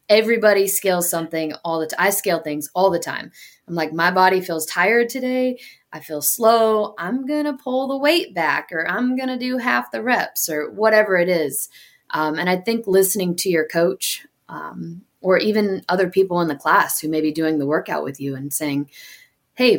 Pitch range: 155-210 Hz